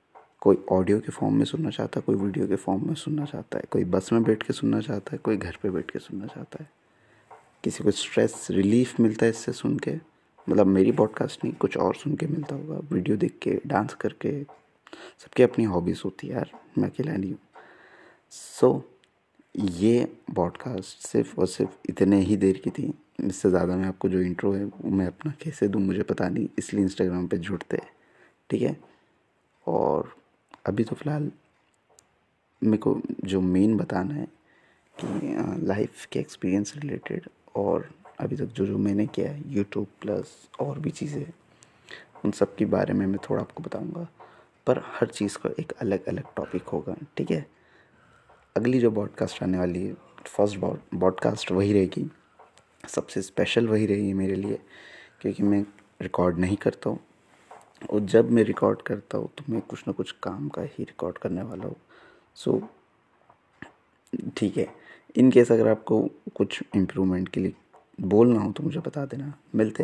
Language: Hindi